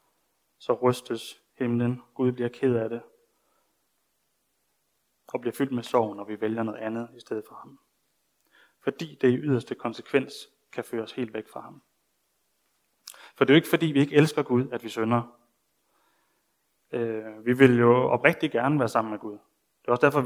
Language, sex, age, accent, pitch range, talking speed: Danish, male, 20-39, native, 115-140 Hz, 180 wpm